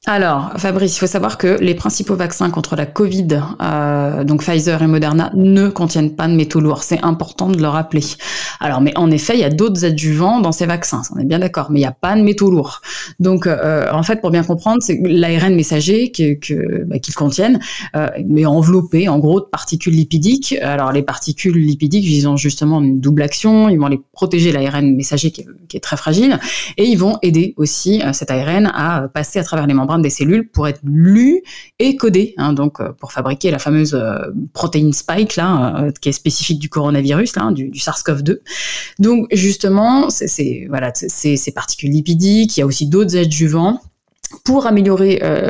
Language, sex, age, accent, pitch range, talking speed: French, female, 20-39, French, 150-195 Hz, 205 wpm